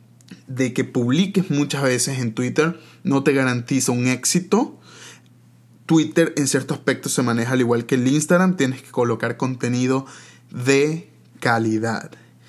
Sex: male